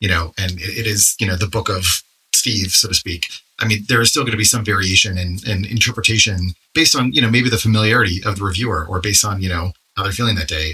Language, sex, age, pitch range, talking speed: English, male, 30-49, 95-120 Hz, 270 wpm